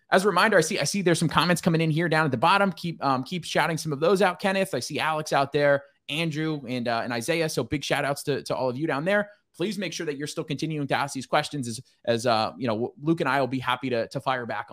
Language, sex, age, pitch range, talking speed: English, male, 20-39, 130-165 Hz, 300 wpm